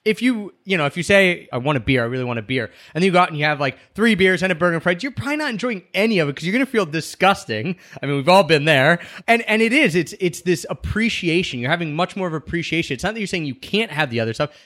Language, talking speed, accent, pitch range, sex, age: English, 305 wpm, American, 140-190 Hz, male, 20-39